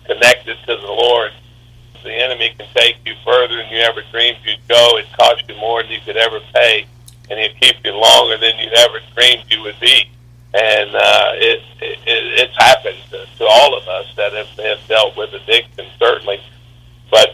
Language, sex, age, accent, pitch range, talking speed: English, male, 50-69, American, 110-130 Hz, 195 wpm